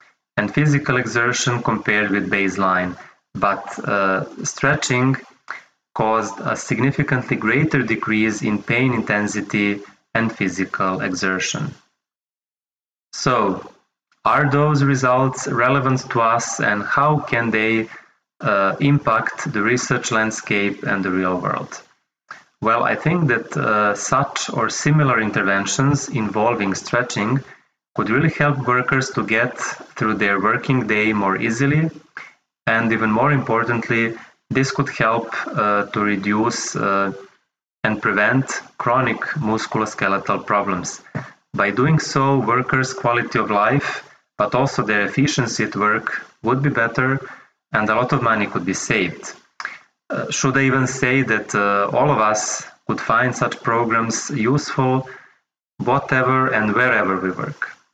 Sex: male